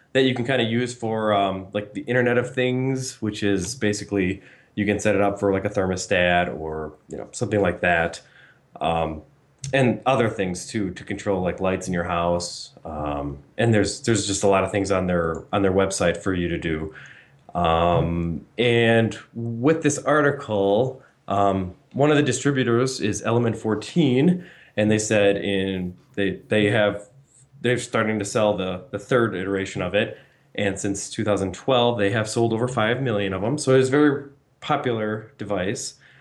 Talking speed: 175 wpm